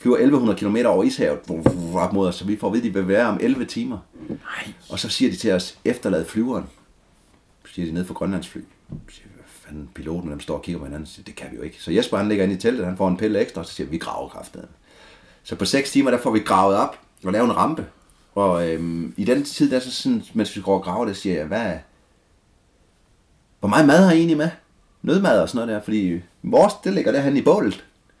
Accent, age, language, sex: native, 30-49, Danish, male